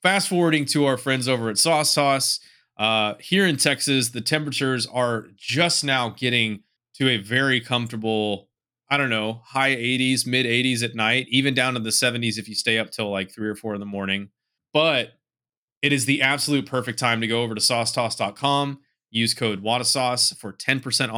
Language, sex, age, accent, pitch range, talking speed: English, male, 30-49, American, 110-140 Hz, 185 wpm